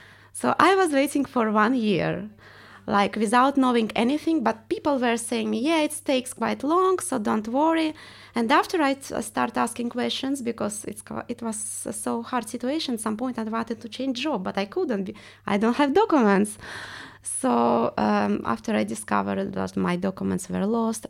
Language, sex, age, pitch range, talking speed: English, female, 20-39, 175-270 Hz, 185 wpm